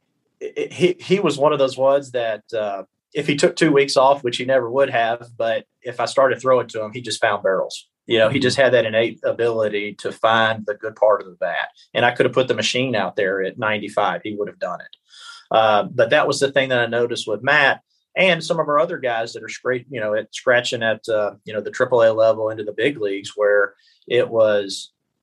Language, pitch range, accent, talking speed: English, 110-140 Hz, American, 245 wpm